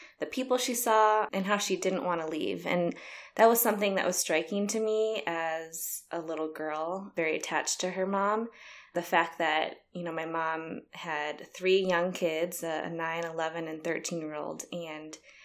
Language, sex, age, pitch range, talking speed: English, female, 20-39, 165-190 Hz, 180 wpm